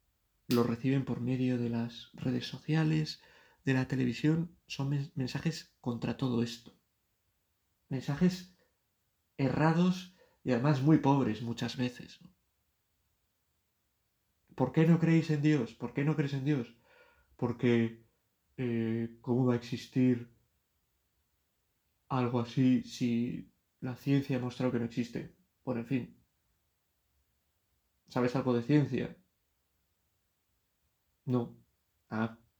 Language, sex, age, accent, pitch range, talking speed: Spanish, male, 30-49, Spanish, 110-130 Hz, 110 wpm